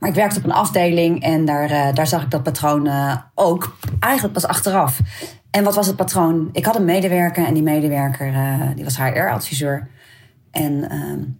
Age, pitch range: 30-49, 135-175 Hz